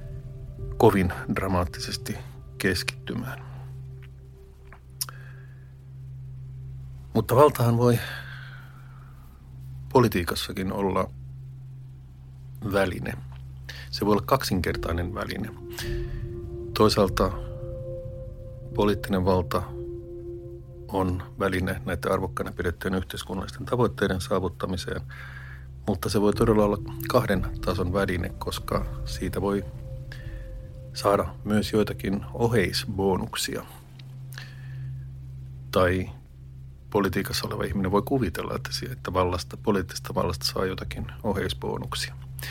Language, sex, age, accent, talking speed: Finnish, male, 50-69, native, 75 wpm